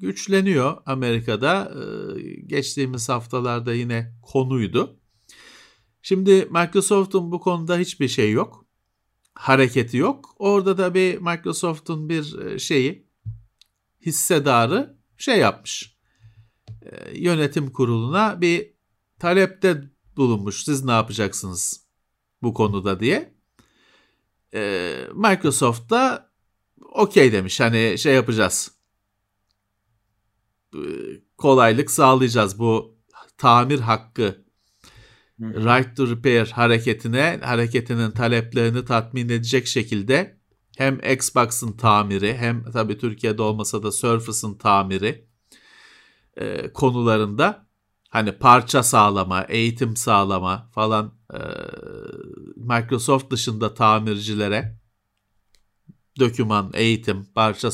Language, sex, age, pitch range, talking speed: Turkish, male, 50-69, 110-135 Hz, 80 wpm